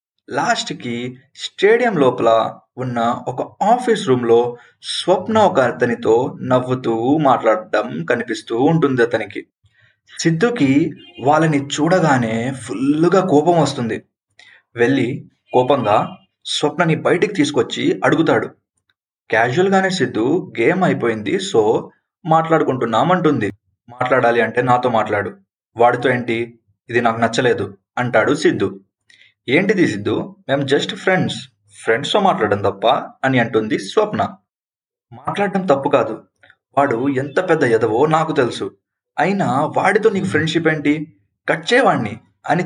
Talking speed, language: 100 wpm, Telugu